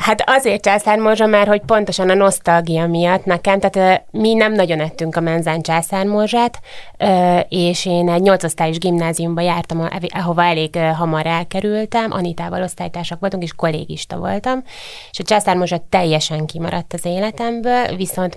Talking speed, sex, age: 135 wpm, female, 20-39